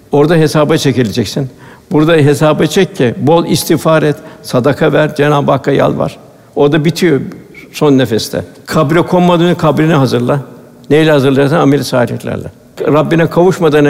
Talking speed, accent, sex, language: 135 wpm, native, male, Turkish